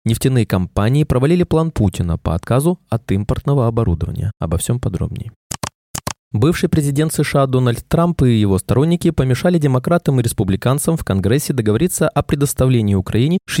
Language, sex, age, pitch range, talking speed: Russian, male, 20-39, 110-150 Hz, 135 wpm